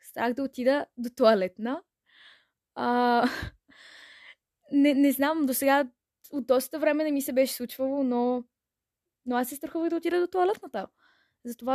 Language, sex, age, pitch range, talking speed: Bulgarian, female, 20-39, 225-265 Hz, 150 wpm